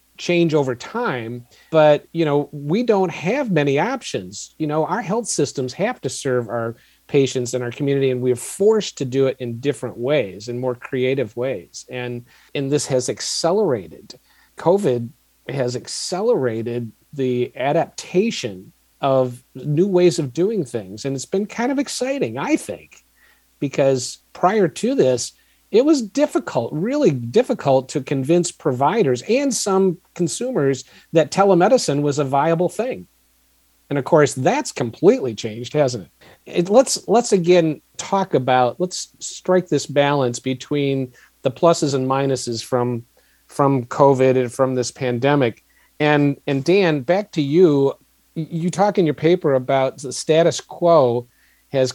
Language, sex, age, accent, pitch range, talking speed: English, male, 40-59, American, 125-175 Hz, 150 wpm